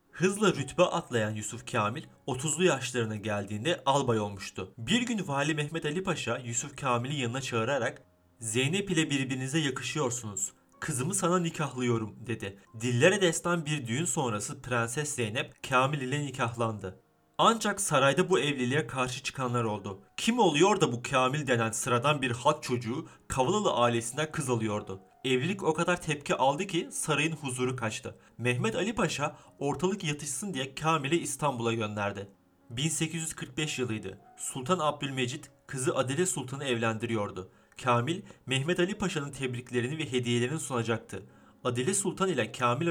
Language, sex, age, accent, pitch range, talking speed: Turkish, male, 30-49, native, 120-160 Hz, 135 wpm